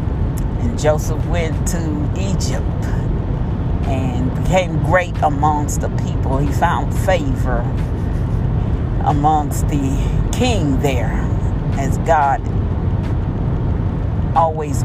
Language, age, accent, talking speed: English, 50-69, American, 85 wpm